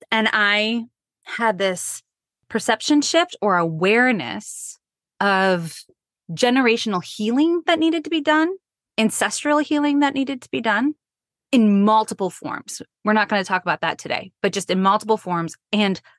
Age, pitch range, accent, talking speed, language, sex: 20-39, 180-255 Hz, American, 150 wpm, English, female